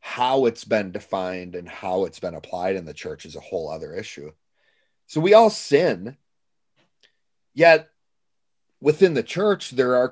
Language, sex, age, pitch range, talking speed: English, male, 40-59, 95-150 Hz, 160 wpm